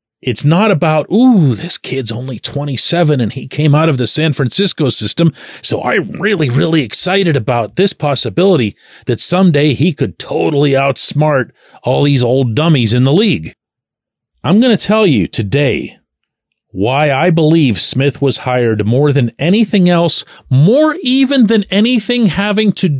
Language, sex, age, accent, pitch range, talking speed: English, male, 40-59, American, 130-185 Hz, 155 wpm